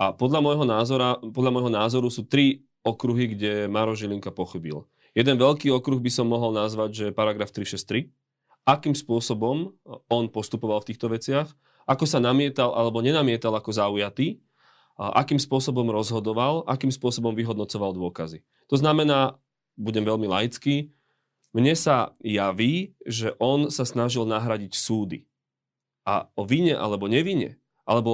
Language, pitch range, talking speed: Slovak, 110-140 Hz, 140 wpm